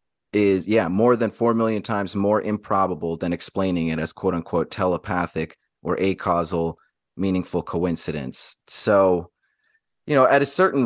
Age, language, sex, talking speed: 30-49, English, male, 150 wpm